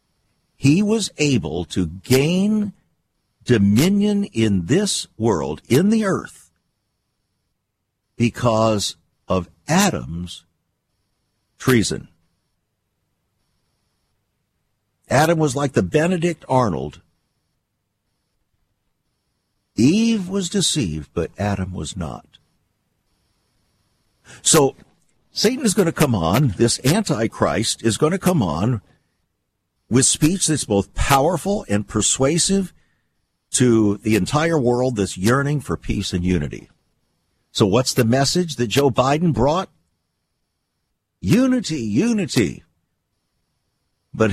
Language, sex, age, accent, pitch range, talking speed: English, male, 60-79, American, 105-160 Hz, 95 wpm